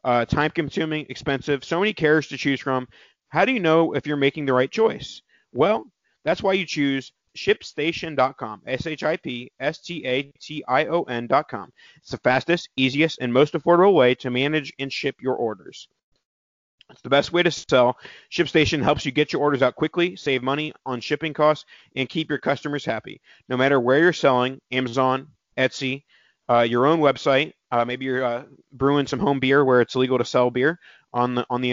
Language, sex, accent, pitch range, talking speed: English, male, American, 125-155 Hz, 175 wpm